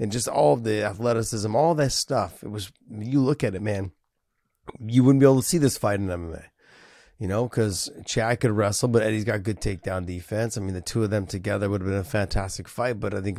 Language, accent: English, American